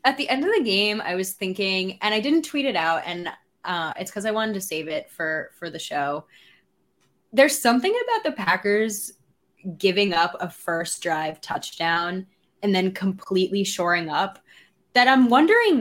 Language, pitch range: English, 185-255 Hz